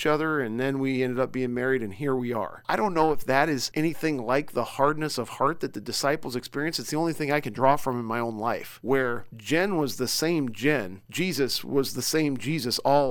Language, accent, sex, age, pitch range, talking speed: English, American, male, 40-59, 120-145 Hz, 240 wpm